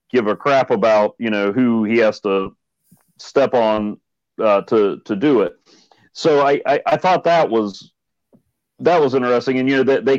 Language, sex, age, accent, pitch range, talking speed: English, male, 40-59, American, 115-150 Hz, 190 wpm